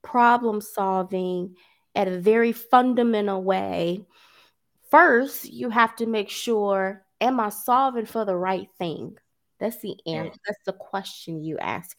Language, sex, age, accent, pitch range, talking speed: English, female, 20-39, American, 190-240 Hz, 140 wpm